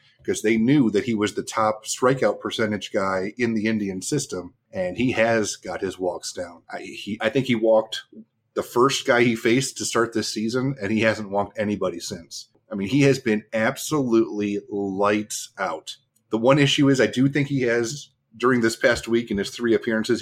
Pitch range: 100-120 Hz